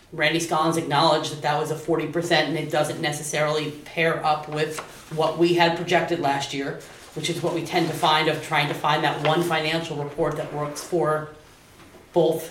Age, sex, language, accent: 30-49, female, English, American